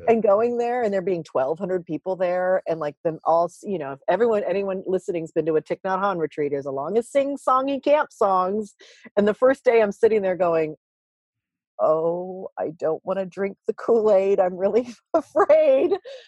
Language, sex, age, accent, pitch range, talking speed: English, female, 40-59, American, 150-205 Hz, 195 wpm